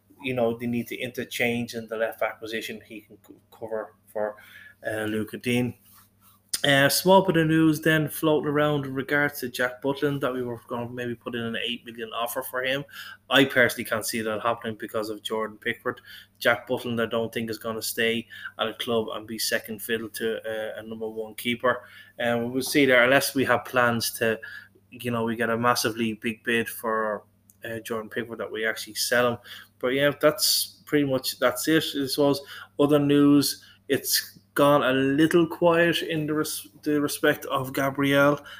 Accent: Irish